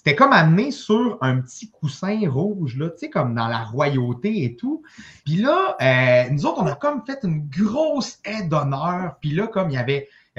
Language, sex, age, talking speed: French, male, 30-49, 200 wpm